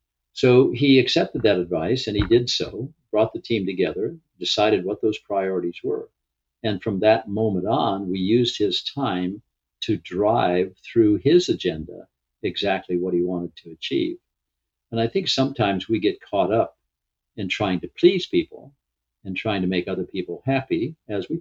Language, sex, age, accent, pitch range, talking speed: English, male, 50-69, American, 90-120 Hz, 170 wpm